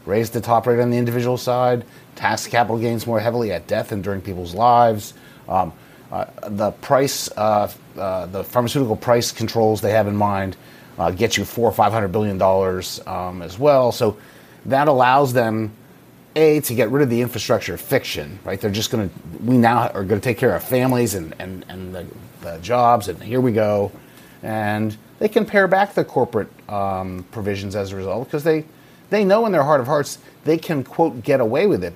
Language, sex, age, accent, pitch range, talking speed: English, male, 30-49, American, 105-130 Hz, 200 wpm